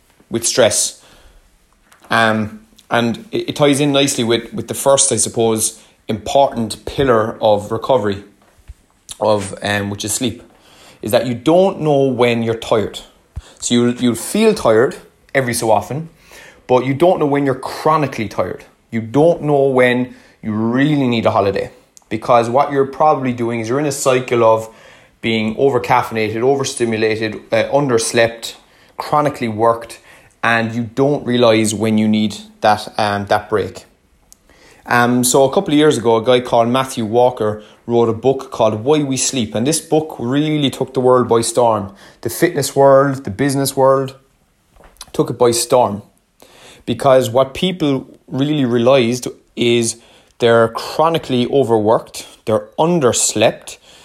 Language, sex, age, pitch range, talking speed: English, male, 30-49, 110-135 Hz, 150 wpm